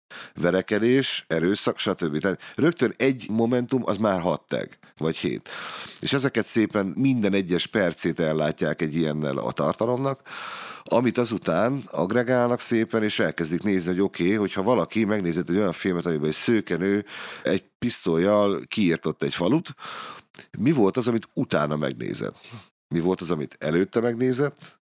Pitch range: 85-115 Hz